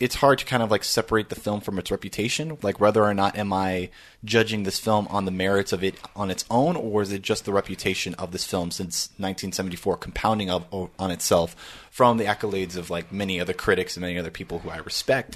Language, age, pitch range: English, 20-39, 90-110 Hz